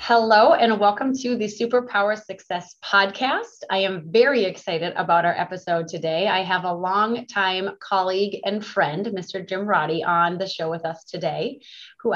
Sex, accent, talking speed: female, American, 165 wpm